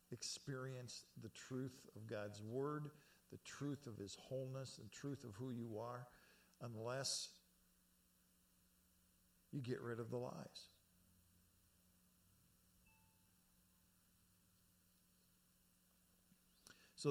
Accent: American